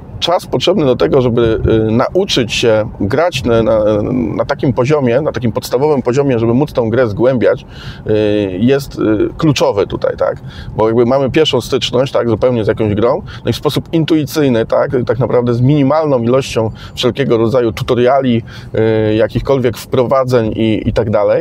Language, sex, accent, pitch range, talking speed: Polish, male, native, 105-125 Hz, 170 wpm